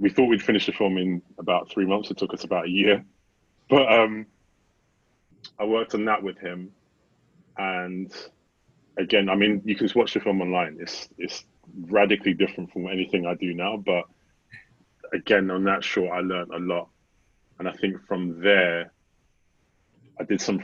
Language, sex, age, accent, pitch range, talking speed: English, male, 20-39, British, 85-95 Hz, 175 wpm